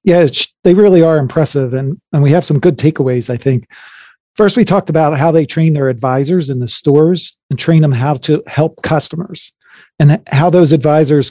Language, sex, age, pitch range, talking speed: English, male, 40-59, 135-160 Hz, 195 wpm